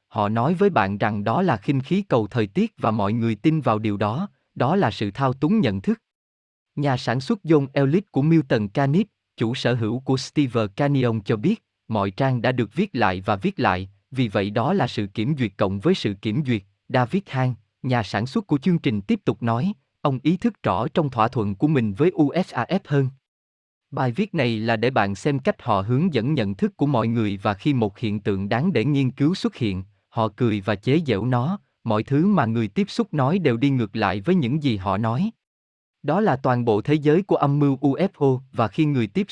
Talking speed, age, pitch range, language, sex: 225 wpm, 20-39, 110-155 Hz, Vietnamese, male